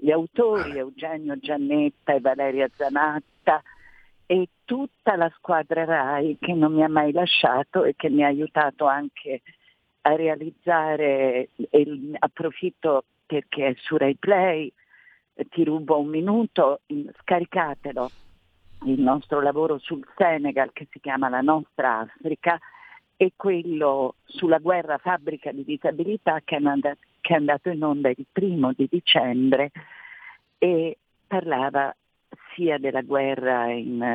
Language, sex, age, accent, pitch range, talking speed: Italian, female, 50-69, native, 140-180 Hz, 125 wpm